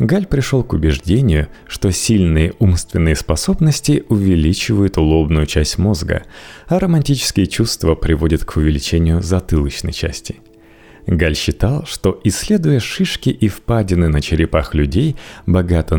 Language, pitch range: Russian, 80-115 Hz